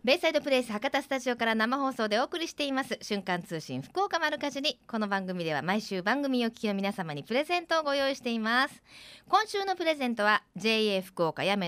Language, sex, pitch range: Japanese, female, 195-280 Hz